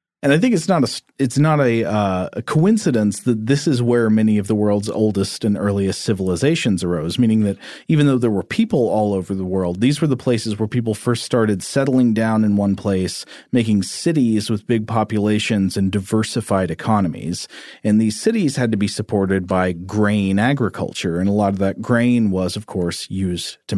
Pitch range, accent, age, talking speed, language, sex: 100-135 Hz, American, 40-59, 195 wpm, English, male